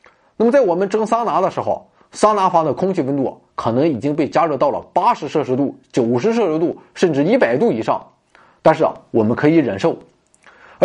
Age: 20-39